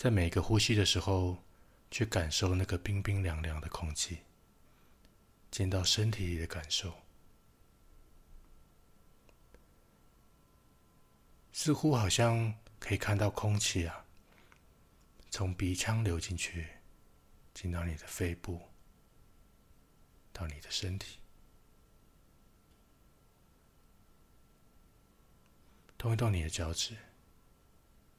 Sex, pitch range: male, 85-105 Hz